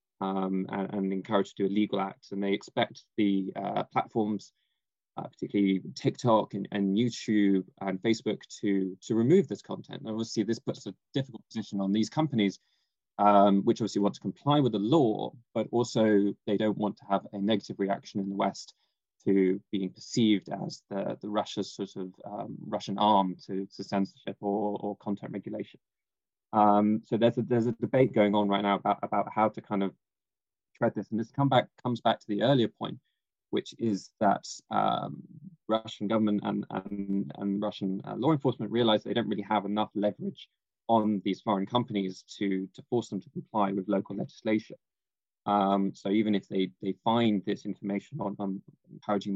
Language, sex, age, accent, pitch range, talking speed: English, male, 20-39, British, 100-110 Hz, 185 wpm